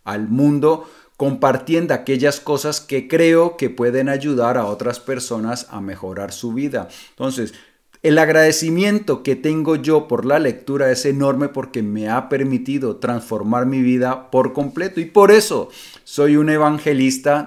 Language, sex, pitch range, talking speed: Spanish, male, 120-155 Hz, 150 wpm